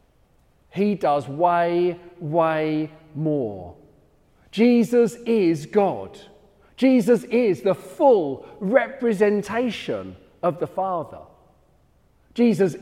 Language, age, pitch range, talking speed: English, 40-59, 130-205 Hz, 80 wpm